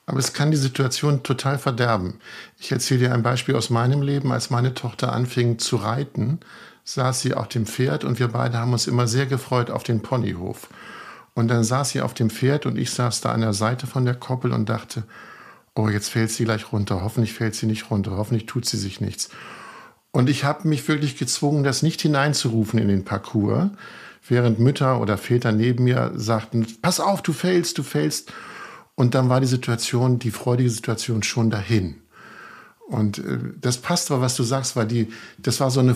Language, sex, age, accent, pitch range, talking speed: German, male, 50-69, German, 115-135 Hz, 200 wpm